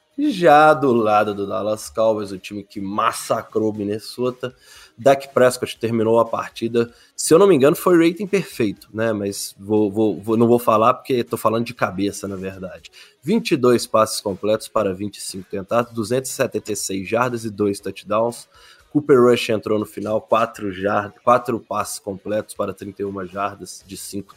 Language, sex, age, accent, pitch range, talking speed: Portuguese, male, 20-39, Brazilian, 100-120 Hz, 165 wpm